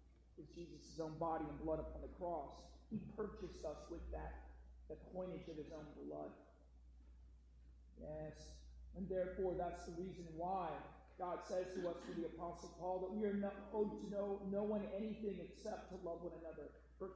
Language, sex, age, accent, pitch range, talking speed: English, male, 40-59, American, 155-205 Hz, 180 wpm